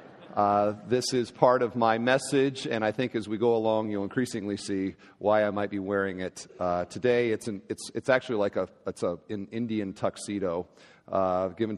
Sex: male